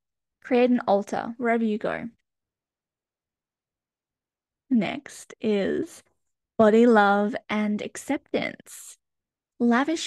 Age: 10-29